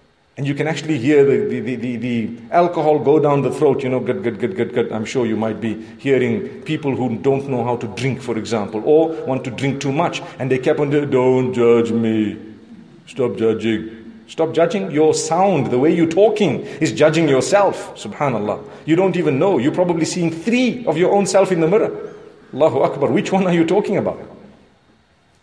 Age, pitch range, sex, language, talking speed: 40-59, 130-200 Hz, male, English, 200 wpm